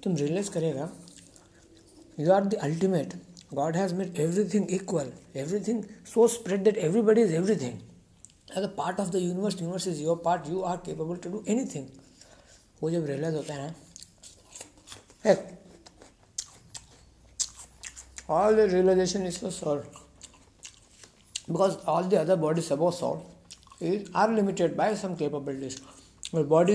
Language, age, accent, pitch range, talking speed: Hindi, 60-79, native, 140-190 Hz, 140 wpm